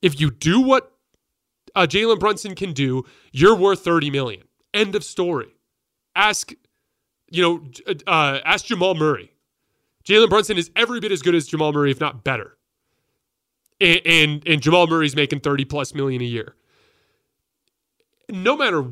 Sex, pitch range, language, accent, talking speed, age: male, 140-205 Hz, English, American, 155 wpm, 30-49